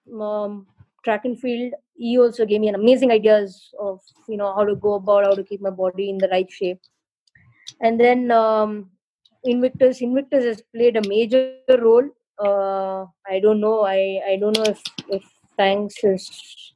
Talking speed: 175 wpm